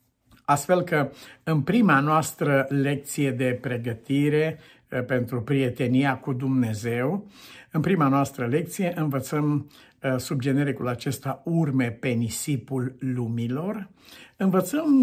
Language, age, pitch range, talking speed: Romanian, 50-69, 130-170 Hz, 95 wpm